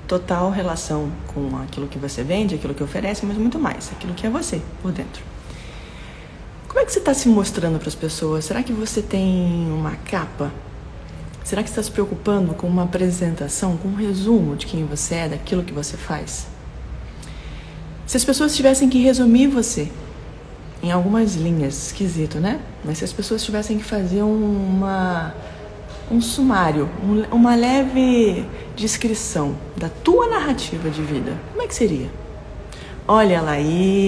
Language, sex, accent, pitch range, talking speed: Portuguese, female, Brazilian, 160-220 Hz, 165 wpm